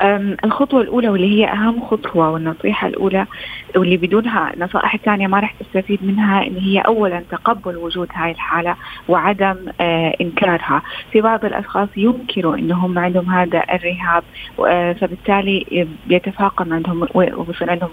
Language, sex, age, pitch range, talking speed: Arabic, female, 30-49, 175-200 Hz, 135 wpm